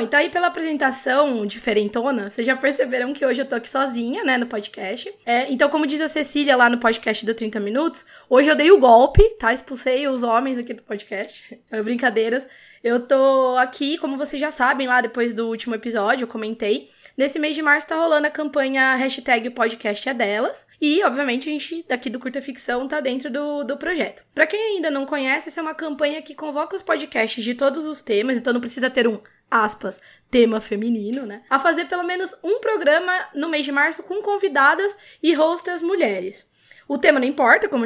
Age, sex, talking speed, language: 10-29, female, 200 wpm, Portuguese